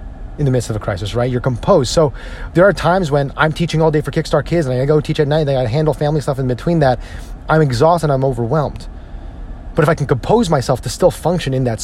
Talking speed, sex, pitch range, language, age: 260 wpm, male, 110-150 Hz, English, 30-49